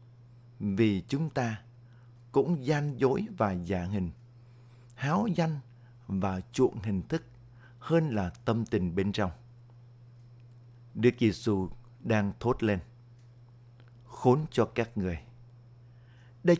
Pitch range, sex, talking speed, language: 110-125 Hz, male, 115 wpm, Vietnamese